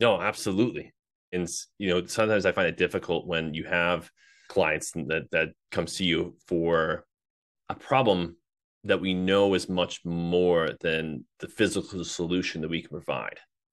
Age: 30-49